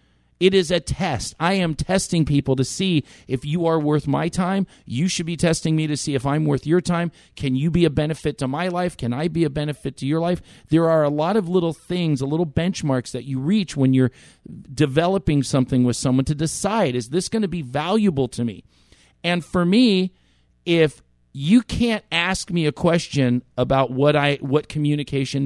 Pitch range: 135-175 Hz